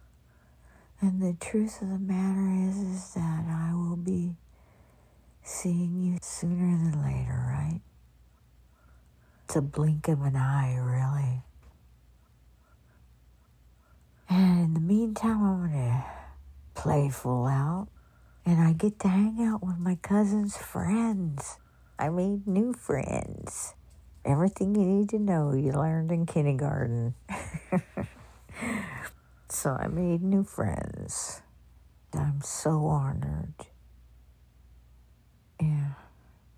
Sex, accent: female, American